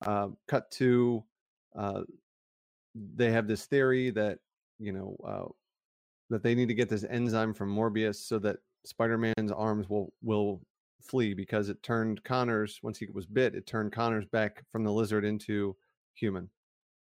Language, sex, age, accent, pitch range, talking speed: English, male, 30-49, American, 100-115 Hz, 155 wpm